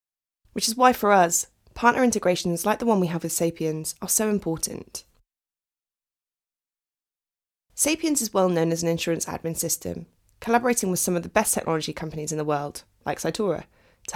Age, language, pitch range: 20-39, English, 160-215 Hz